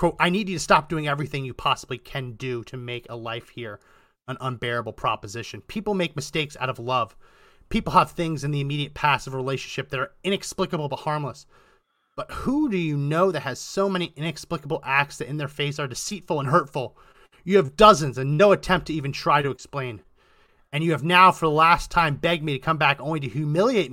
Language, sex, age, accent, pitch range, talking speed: English, male, 30-49, American, 140-195 Hz, 215 wpm